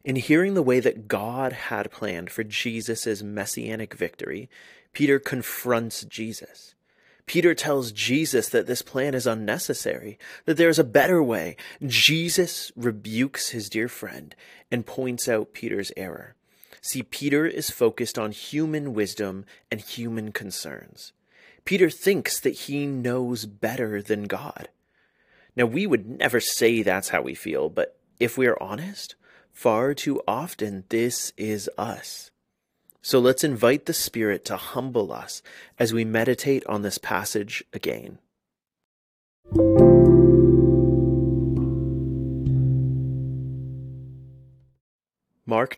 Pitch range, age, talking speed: 110-135 Hz, 30-49, 120 wpm